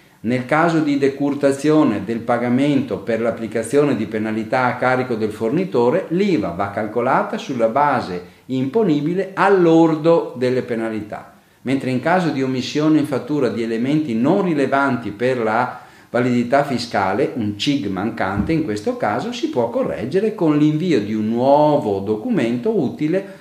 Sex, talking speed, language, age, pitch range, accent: male, 140 wpm, Italian, 50-69, 115-150 Hz, native